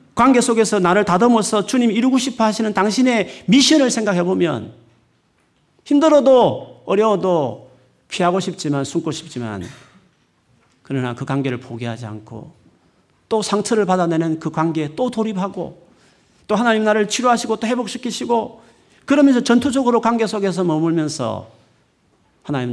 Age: 40-59